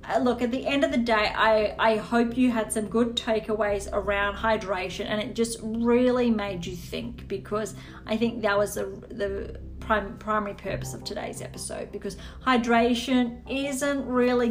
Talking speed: 170 wpm